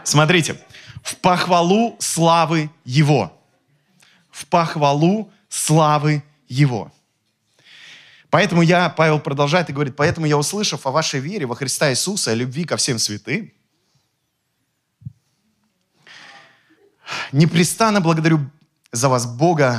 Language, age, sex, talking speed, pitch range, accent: Russian, 20-39, male, 105 wpm, 135-170 Hz, native